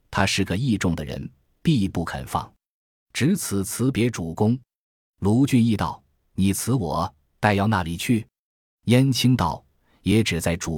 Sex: male